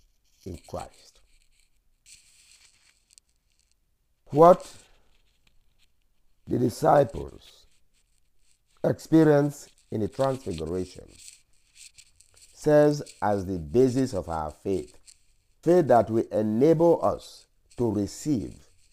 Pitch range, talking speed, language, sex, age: 90-125 Hz, 75 wpm, English, male, 50-69